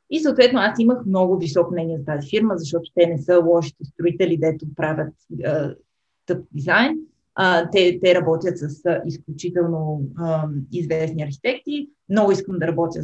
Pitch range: 170-260 Hz